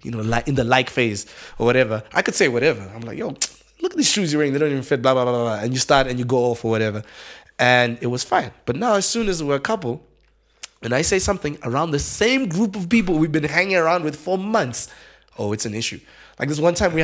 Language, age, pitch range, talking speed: English, 20-39, 120-180 Hz, 270 wpm